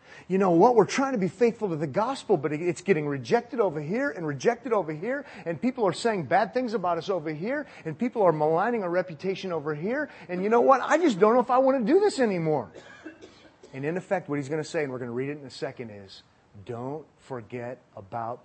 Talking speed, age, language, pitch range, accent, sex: 245 wpm, 30-49, English, 150-235 Hz, American, male